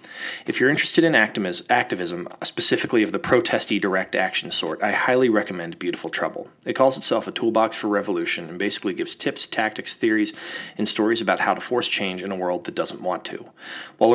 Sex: male